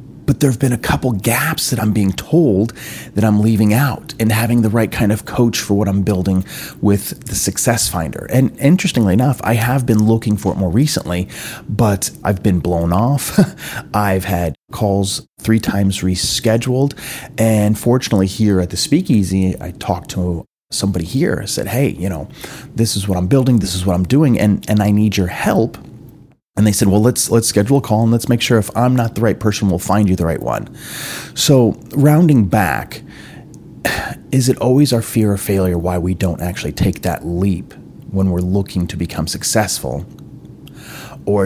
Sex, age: male, 30-49